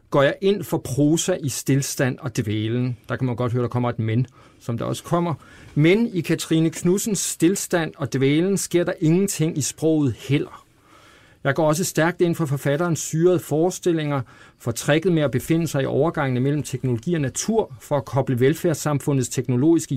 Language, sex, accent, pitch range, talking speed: Danish, male, native, 125-160 Hz, 185 wpm